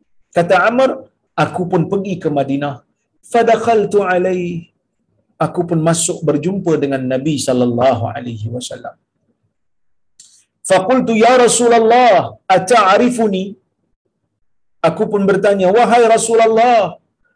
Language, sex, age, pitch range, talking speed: Malayalam, male, 50-69, 165-235 Hz, 90 wpm